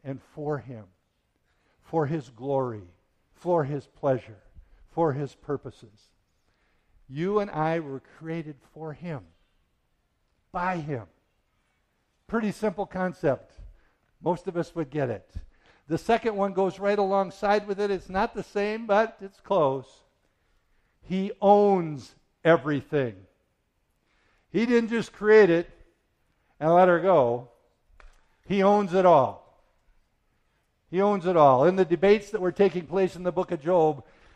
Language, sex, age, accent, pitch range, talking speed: English, male, 60-79, American, 135-200 Hz, 135 wpm